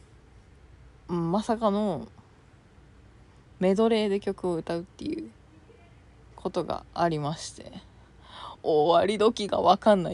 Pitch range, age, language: 155-210 Hz, 20-39, Japanese